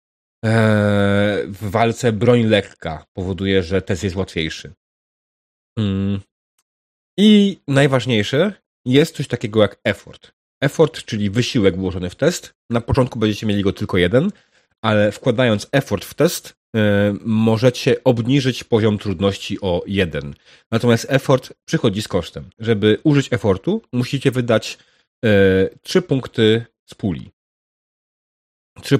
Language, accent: Polish, native